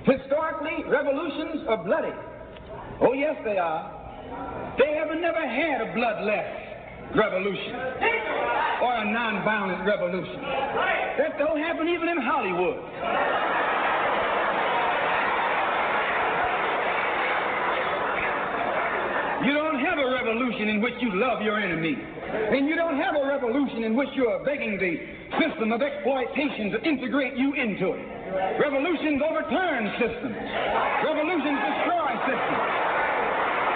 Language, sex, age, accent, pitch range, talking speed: English, male, 60-79, American, 235-315 Hz, 110 wpm